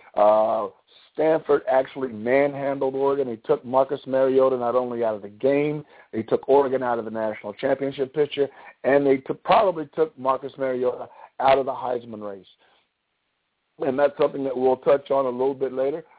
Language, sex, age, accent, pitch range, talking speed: English, male, 50-69, American, 130-145 Hz, 170 wpm